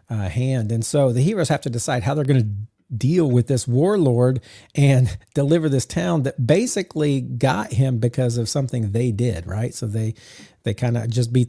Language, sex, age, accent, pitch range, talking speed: English, male, 40-59, American, 115-140 Hz, 200 wpm